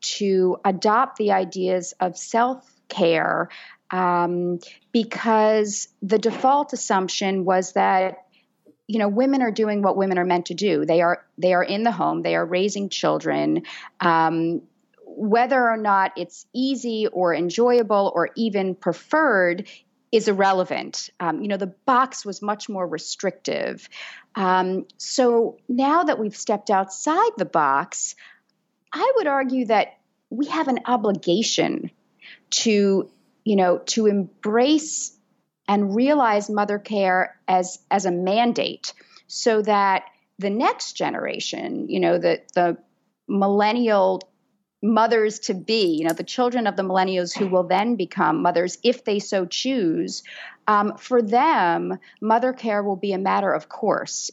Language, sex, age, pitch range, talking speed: English, female, 40-59, 185-230 Hz, 140 wpm